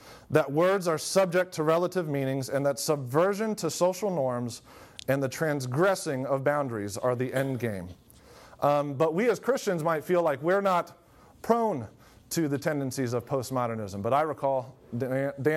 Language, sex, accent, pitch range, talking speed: English, male, American, 125-155 Hz, 160 wpm